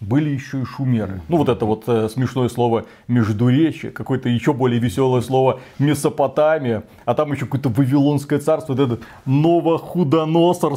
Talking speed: 150 wpm